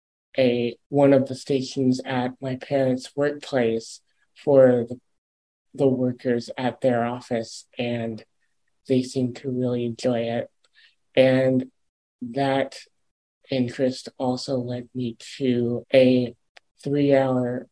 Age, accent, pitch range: 30-49, American, 120-135 Hz